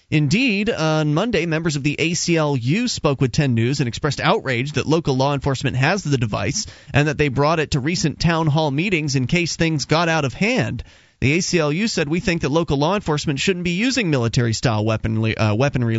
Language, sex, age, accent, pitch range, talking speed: English, male, 30-49, American, 140-190 Hz, 205 wpm